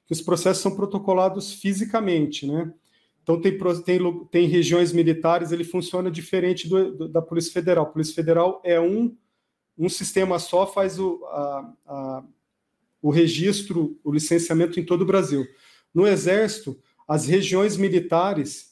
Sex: male